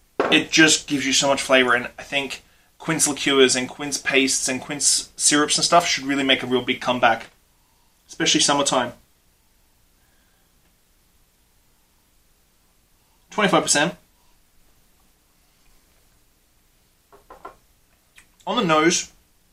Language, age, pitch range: English, 20-39, 110-145 Hz